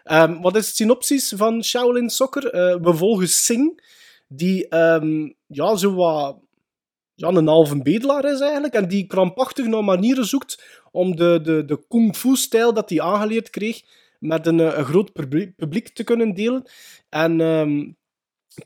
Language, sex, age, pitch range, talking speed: Dutch, male, 20-39, 160-220 Hz, 160 wpm